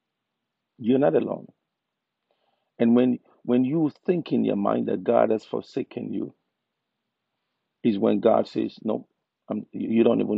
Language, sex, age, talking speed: English, male, 50-69, 145 wpm